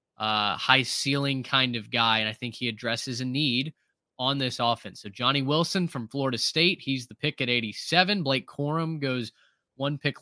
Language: English